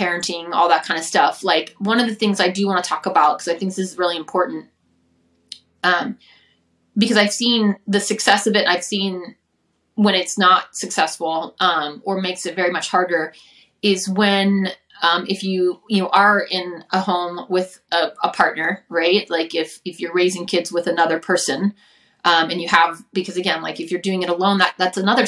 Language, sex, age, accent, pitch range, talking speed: English, female, 30-49, American, 175-210 Hz, 200 wpm